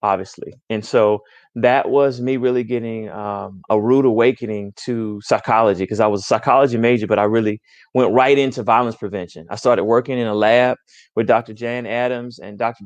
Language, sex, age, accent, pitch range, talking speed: English, male, 30-49, American, 115-140 Hz, 185 wpm